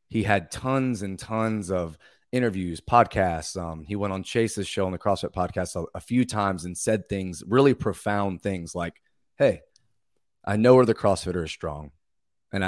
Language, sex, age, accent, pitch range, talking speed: English, male, 30-49, American, 85-105 Hz, 180 wpm